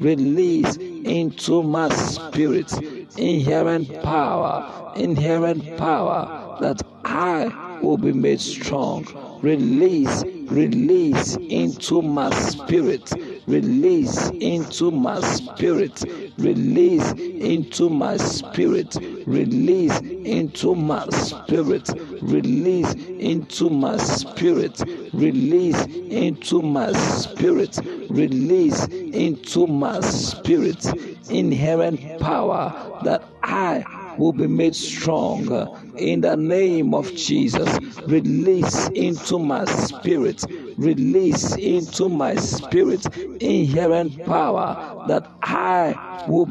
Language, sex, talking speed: English, male, 90 wpm